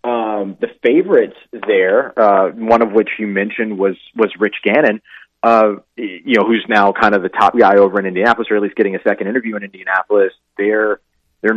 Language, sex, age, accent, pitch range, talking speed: English, male, 30-49, American, 100-120 Hz, 195 wpm